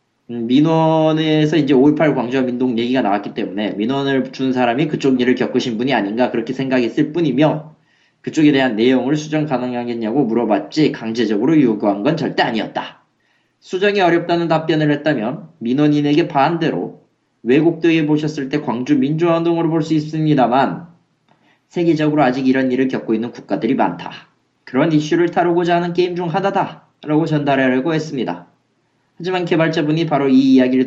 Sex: male